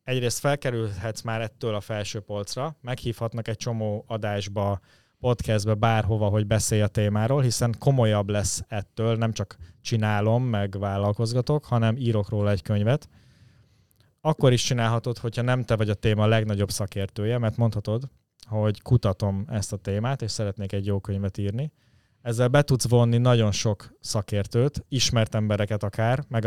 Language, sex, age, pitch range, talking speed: Hungarian, male, 20-39, 105-120 Hz, 150 wpm